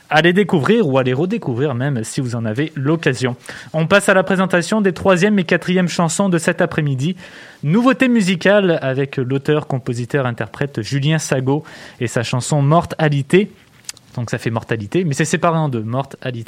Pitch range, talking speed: 125-160 Hz, 170 wpm